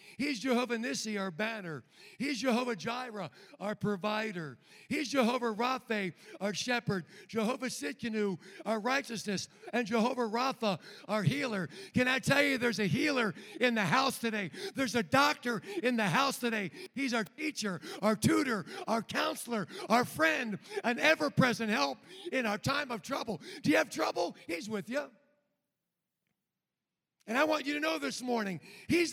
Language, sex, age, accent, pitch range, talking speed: English, male, 60-79, American, 205-275 Hz, 155 wpm